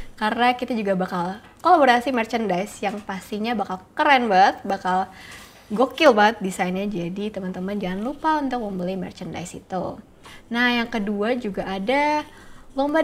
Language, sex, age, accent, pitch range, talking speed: Indonesian, female, 20-39, native, 195-245 Hz, 135 wpm